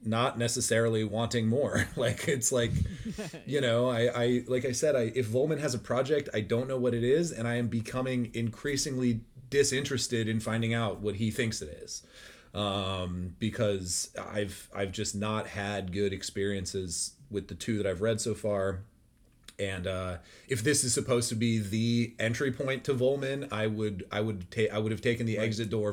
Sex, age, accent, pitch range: male, 30-49, American, 100-120 Hz